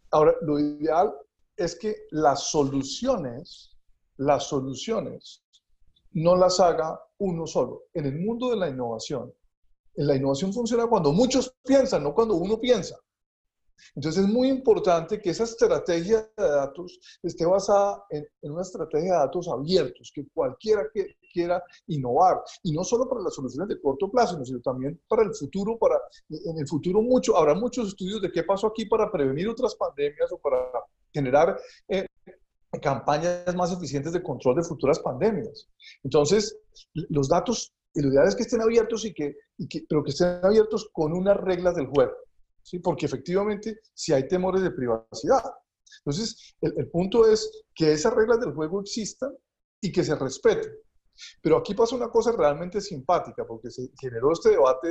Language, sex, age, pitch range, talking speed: Spanish, male, 40-59, 155-225 Hz, 165 wpm